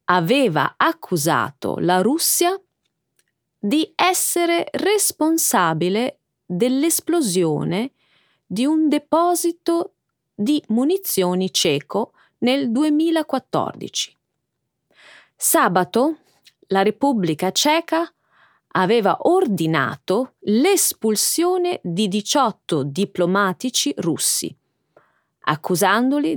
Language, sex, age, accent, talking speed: Italian, female, 30-49, native, 65 wpm